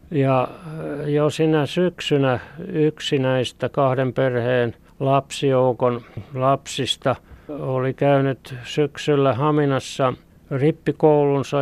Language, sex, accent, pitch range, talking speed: Finnish, male, native, 125-145 Hz, 75 wpm